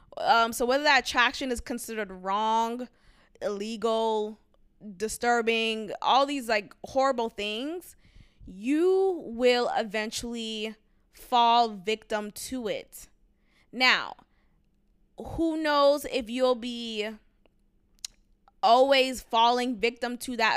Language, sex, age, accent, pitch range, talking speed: English, female, 20-39, American, 215-270 Hz, 95 wpm